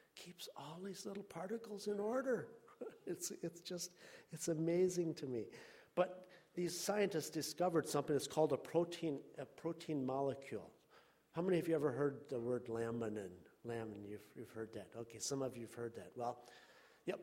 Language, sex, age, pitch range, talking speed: English, male, 50-69, 115-160 Hz, 170 wpm